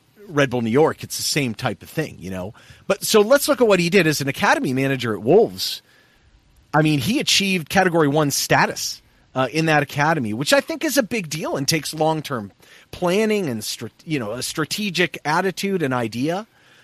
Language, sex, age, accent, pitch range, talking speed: English, male, 40-59, American, 115-185 Hz, 200 wpm